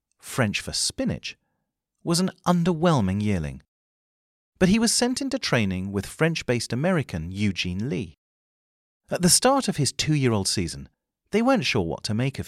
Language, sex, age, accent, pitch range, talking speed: English, male, 40-59, British, 90-145 Hz, 155 wpm